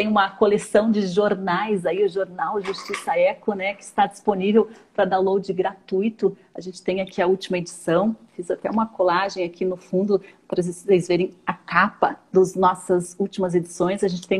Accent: Brazilian